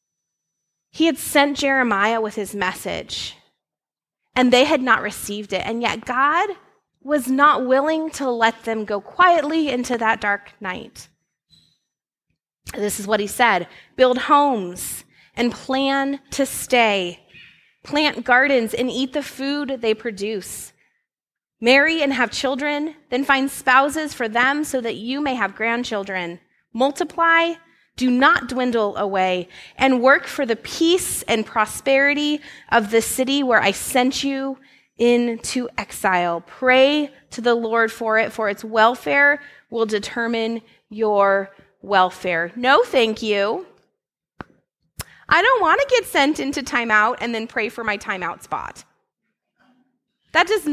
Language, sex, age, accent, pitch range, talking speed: English, female, 20-39, American, 220-280 Hz, 135 wpm